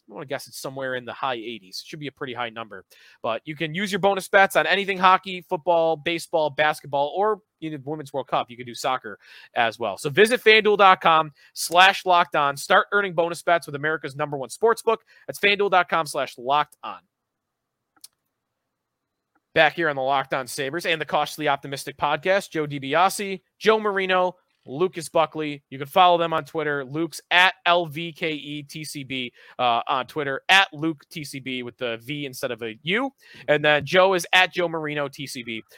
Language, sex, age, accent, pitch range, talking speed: English, male, 30-49, American, 140-185 Hz, 190 wpm